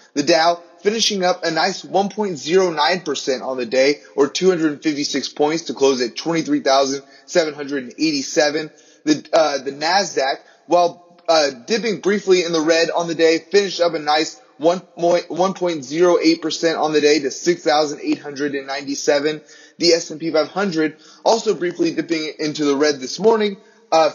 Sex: male